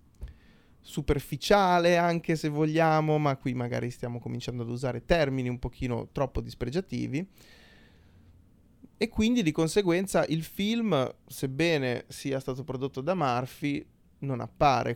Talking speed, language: 120 wpm, Italian